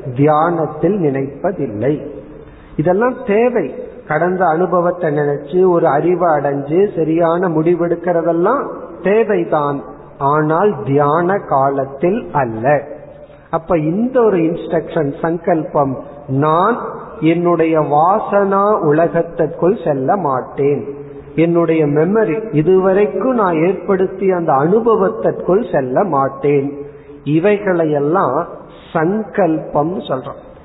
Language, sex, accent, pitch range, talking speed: Tamil, male, native, 145-185 Hz, 70 wpm